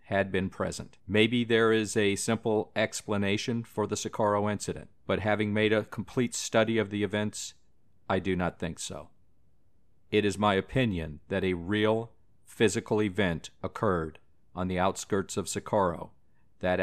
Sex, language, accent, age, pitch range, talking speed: male, English, American, 50-69, 90-110 Hz, 155 wpm